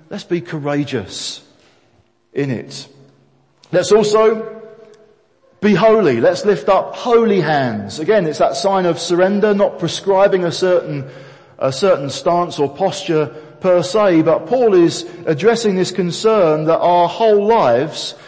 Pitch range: 155-195 Hz